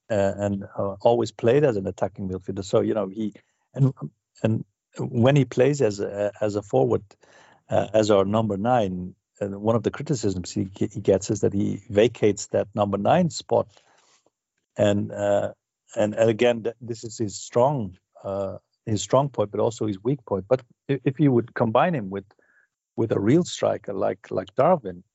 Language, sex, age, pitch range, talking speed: English, male, 50-69, 100-120 Hz, 185 wpm